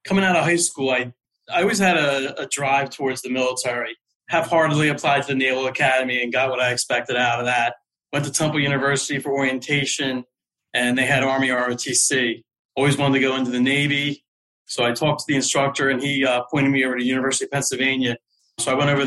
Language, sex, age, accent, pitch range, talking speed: English, male, 30-49, American, 125-140 Hz, 210 wpm